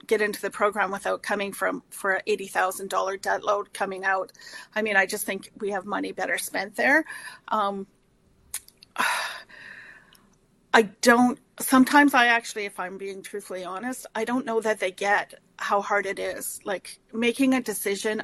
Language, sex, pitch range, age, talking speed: English, female, 200-240 Hz, 40-59, 170 wpm